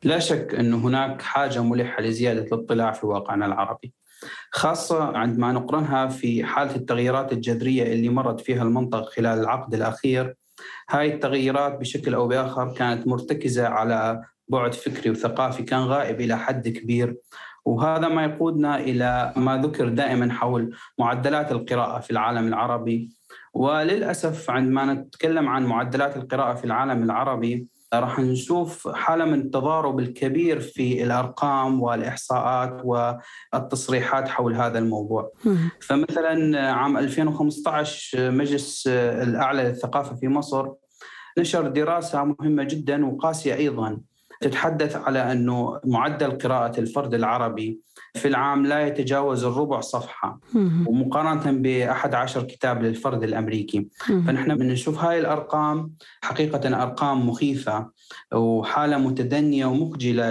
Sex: male